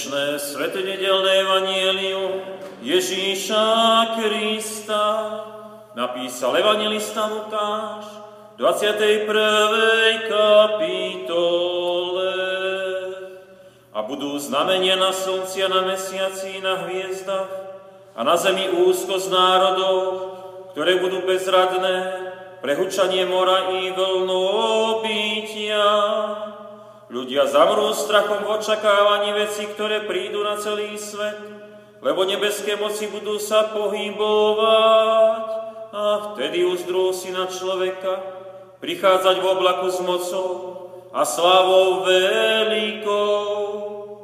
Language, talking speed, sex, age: Slovak, 85 wpm, male, 40-59